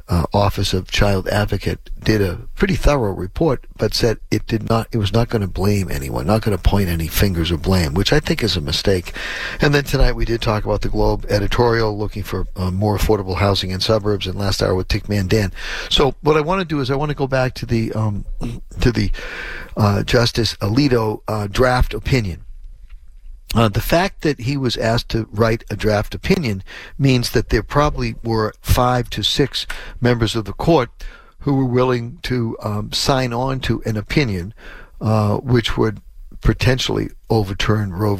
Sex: male